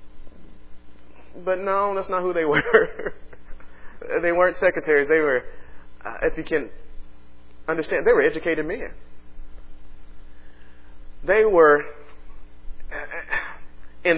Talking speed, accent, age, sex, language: 100 wpm, American, 30-49, male, English